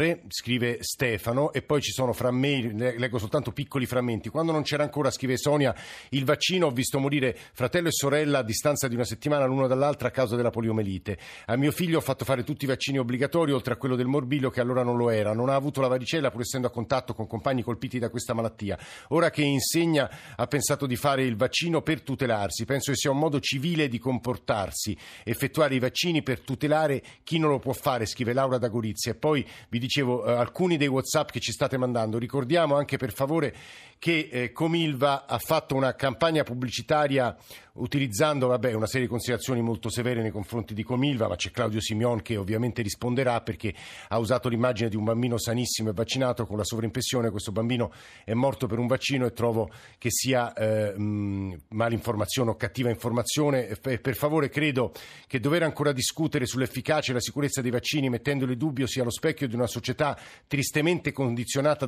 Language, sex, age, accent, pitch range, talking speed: Italian, male, 50-69, native, 120-140 Hz, 185 wpm